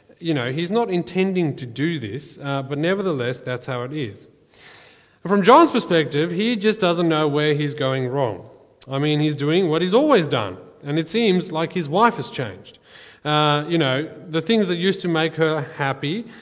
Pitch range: 130-175 Hz